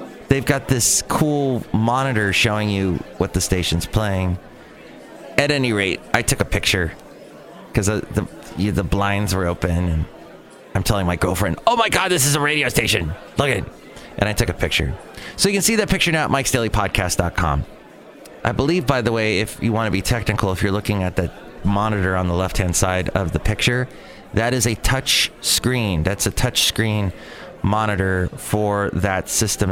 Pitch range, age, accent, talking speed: 90-120 Hz, 30-49, American, 190 wpm